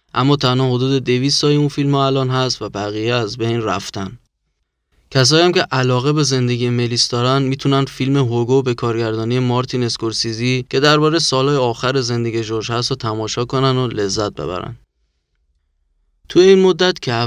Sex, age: male, 20-39